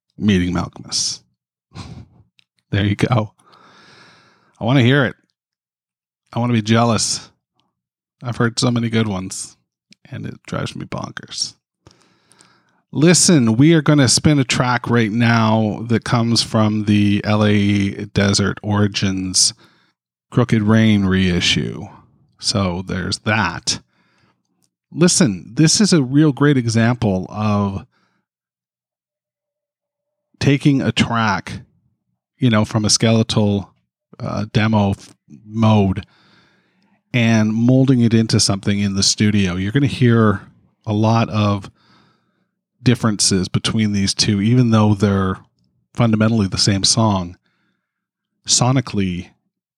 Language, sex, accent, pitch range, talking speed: English, male, American, 100-120 Hz, 115 wpm